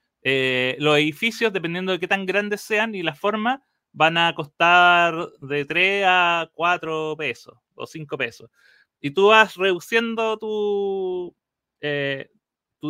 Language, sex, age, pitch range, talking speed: Spanish, male, 30-49, 145-200 Hz, 135 wpm